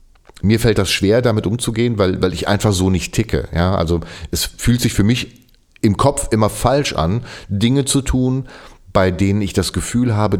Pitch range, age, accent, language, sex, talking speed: 90-115 Hz, 40-59, German, German, male, 195 wpm